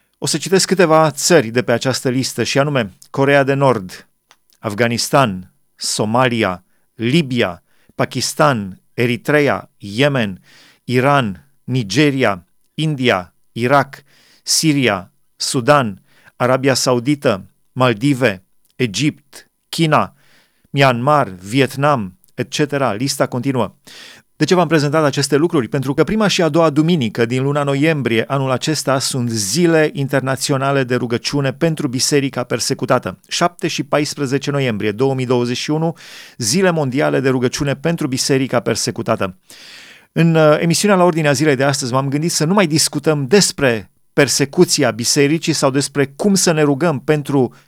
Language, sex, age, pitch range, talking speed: Romanian, male, 40-59, 125-155 Hz, 120 wpm